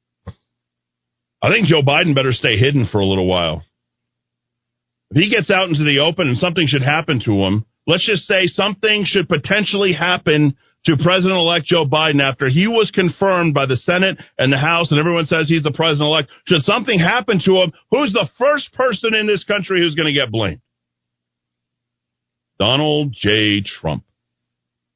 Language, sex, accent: English, male, American